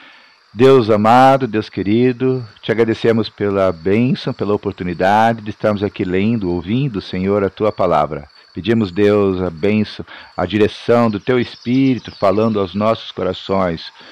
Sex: male